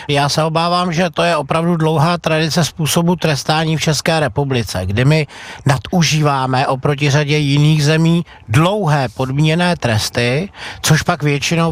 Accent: native